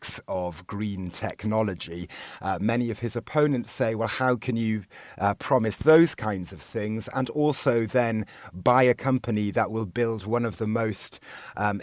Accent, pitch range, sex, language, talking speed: British, 105-125 Hz, male, English, 165 wpm